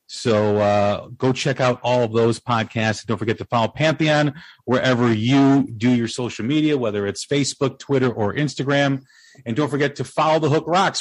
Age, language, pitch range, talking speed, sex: 40-59, English, 120-160 Hz, 185 wpm, male